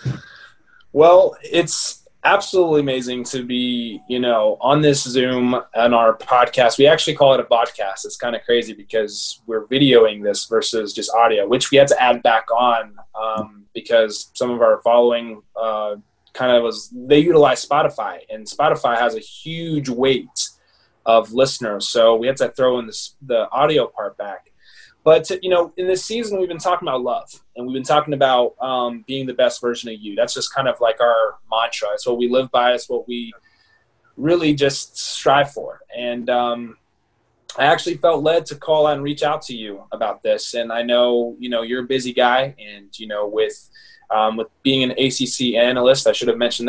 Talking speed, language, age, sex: 195 wpm, English, 20-39, male